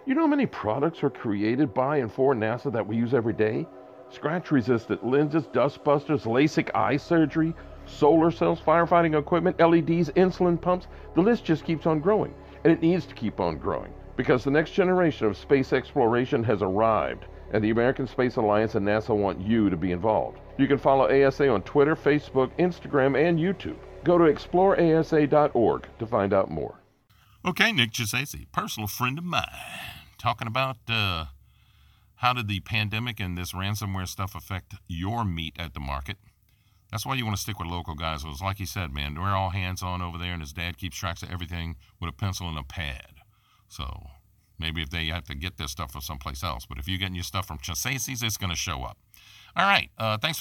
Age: 50-69